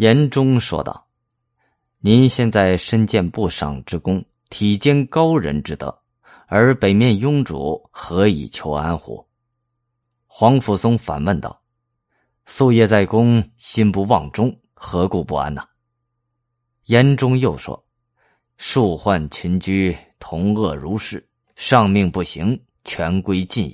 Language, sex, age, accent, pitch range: Chinese, male, 20-39, native, 90-120 Hz